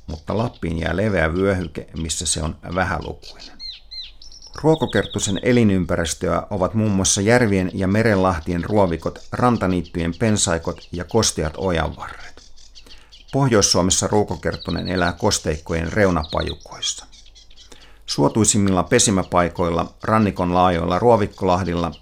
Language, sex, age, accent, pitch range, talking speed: Finnish, male, 50-69, native, 80-100 Hz, 95 wpm